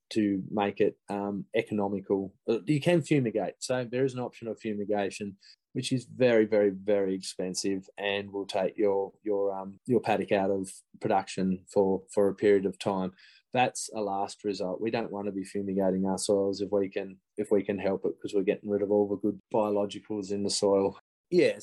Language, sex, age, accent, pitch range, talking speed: English, male, 20-39, Australian, 100-115 Hz, 195 wpm